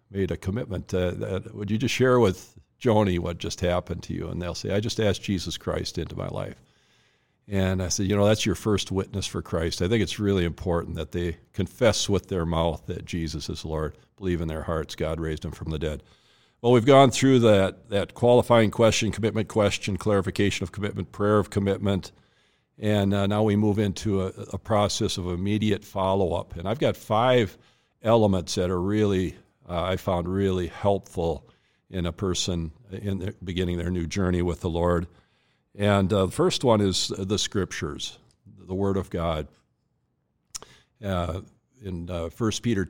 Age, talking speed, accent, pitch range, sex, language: 50-69, 185 wpm, American, 90-105 Hz, male, English